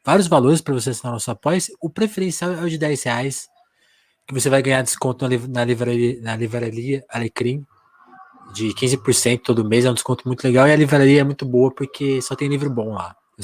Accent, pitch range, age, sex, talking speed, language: Brazilian, 115-135 Hz, 20-39, male, 205 wpm, Portuguese